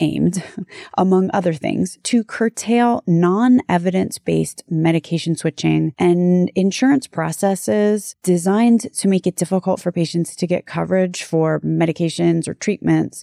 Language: English